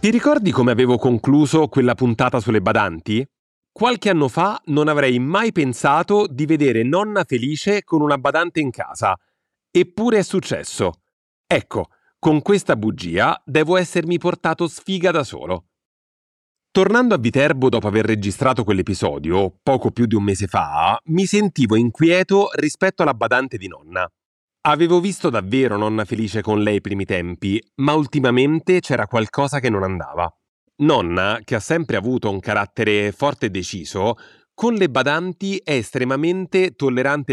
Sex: male